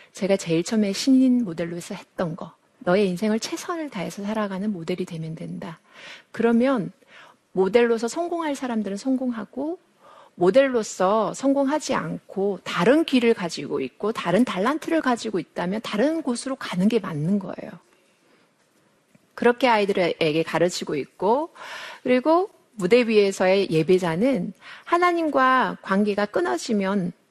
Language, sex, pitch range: Korean, female, 190-265 Hz